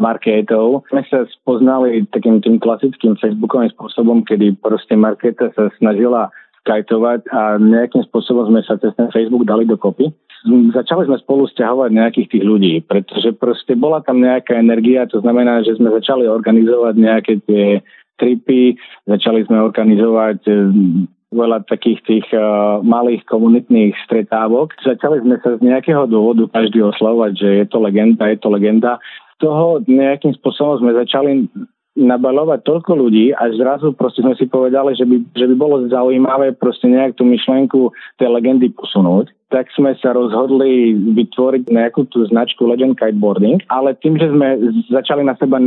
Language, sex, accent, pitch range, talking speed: English, male, Czech, 110-130 Hz, 150 wpm